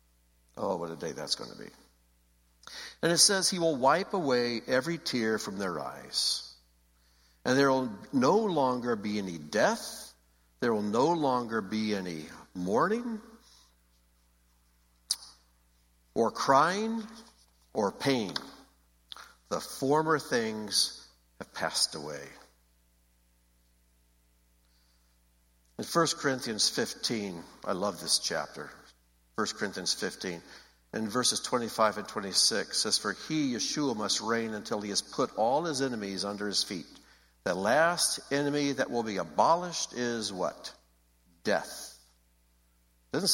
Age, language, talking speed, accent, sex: 60-79, English, 125 wpm, American, male